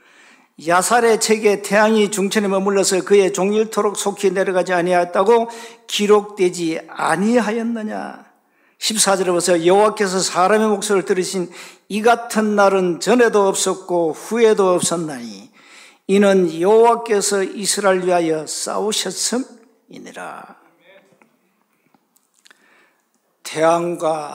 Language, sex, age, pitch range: Korean, male, 50-69, 180-225 Hz